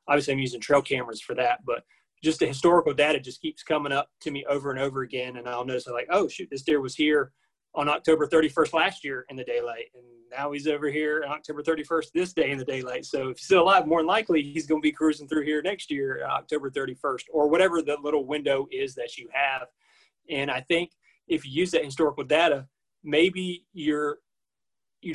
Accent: American